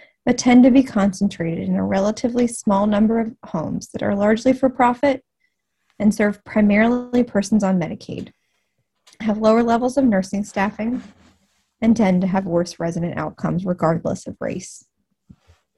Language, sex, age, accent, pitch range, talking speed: English, female, 20-39, American, 190-245 Hz, 150 wpm